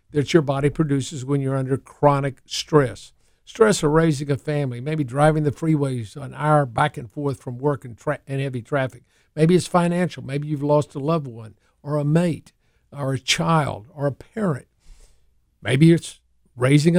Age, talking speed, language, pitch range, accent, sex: 50-69, 180 wpm, English, 130-160 Hz, American, male